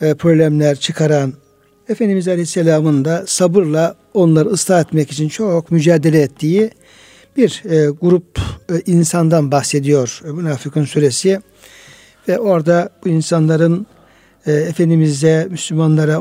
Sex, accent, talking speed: male, native, 95 wpm